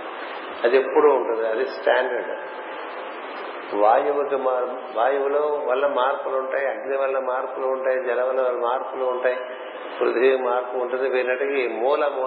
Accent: native